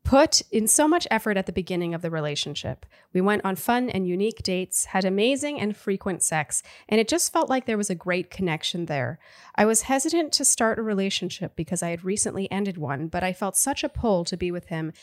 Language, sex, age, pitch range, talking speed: English, female, 30-49, 175-230 Hz, 230 wpm